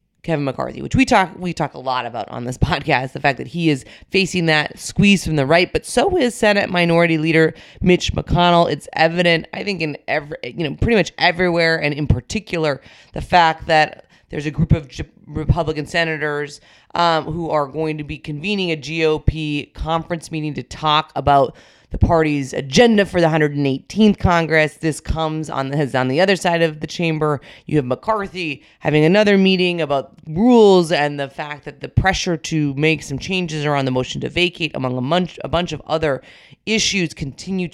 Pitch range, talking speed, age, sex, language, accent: 145-175 Hz, 185 wpm, 30-49, female, English, American